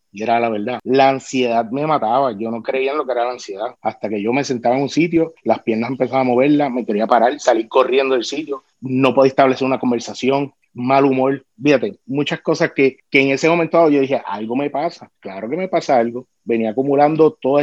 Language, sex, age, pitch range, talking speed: Spanish, male, 30-49, 120-140 Hz, 220 wpm